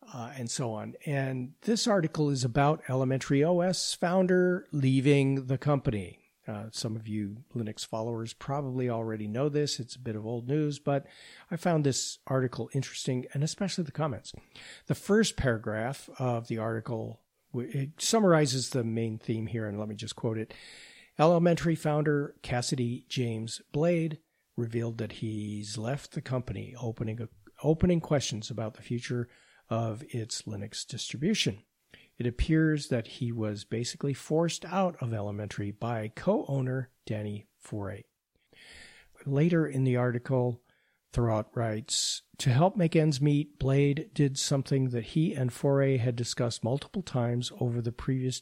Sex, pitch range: male, 115-150 Hz